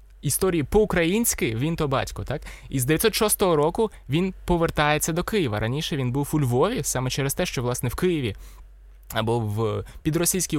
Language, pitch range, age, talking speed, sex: Ukrainian, 125-170 Hz, 20-39, 165 wpm, male